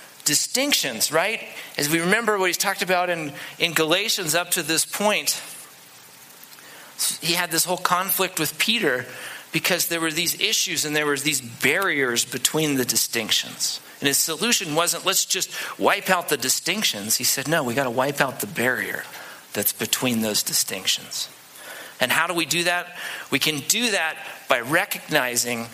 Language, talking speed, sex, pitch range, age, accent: English, 170 wpm, male, 130-185 Hz, 40-59, American